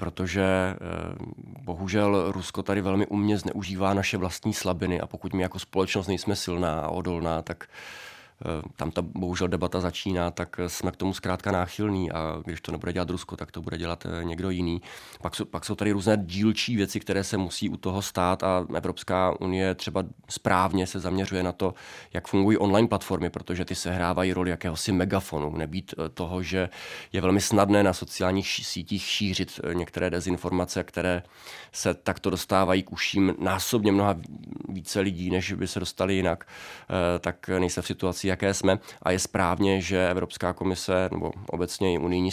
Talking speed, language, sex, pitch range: 170 wpm, Czech, male, 90-95 Hz